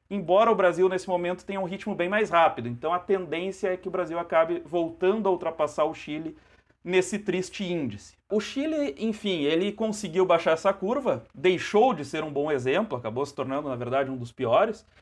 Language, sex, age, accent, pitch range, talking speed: Portuguese, male, 40-59, Brazilian, 140-195 Hz, 195 wpm